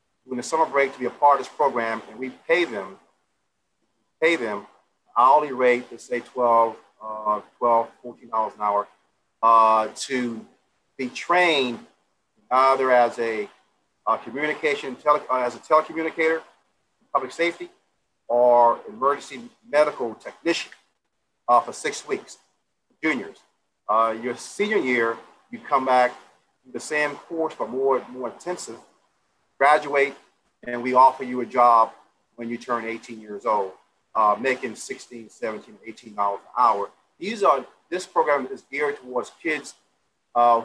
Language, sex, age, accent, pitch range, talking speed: English, male, 40-59, American, 115-145 Hz, 145 wpm